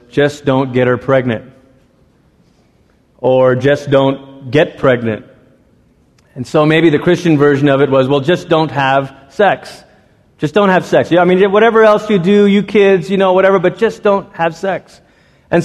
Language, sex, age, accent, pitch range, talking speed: English, male, 30-49, American, 145-195 Hz, 175 wpm